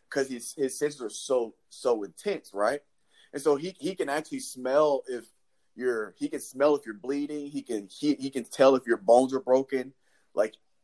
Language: English